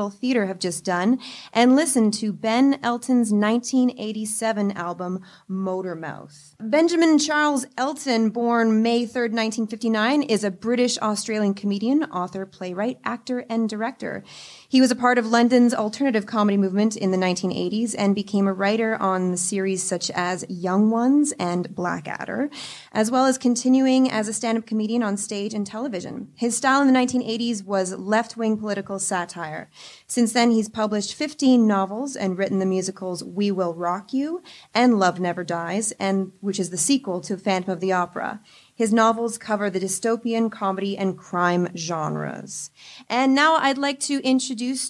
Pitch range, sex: 195-240 Hz, female